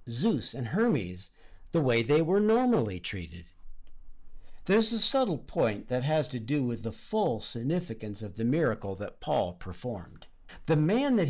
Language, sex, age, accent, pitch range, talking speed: English, male, 50-69, American, 100-150 Hz, 160 wpm